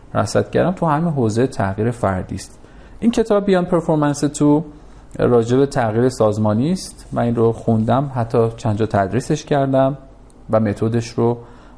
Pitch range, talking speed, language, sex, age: 105-145 Hz, 130 wpm, Persian, male, 40-59